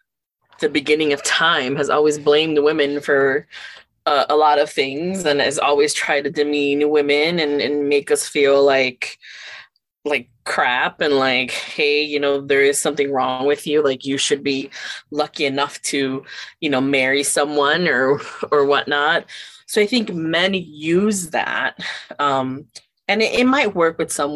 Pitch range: 140-160 Hz